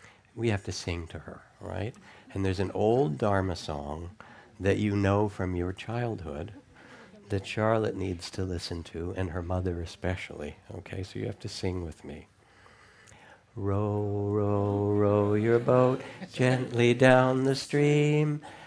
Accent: American